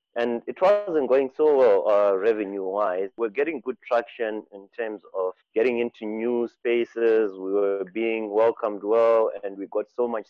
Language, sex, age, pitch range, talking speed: English, male, 30-49, 100-130 Hz, 170 wpm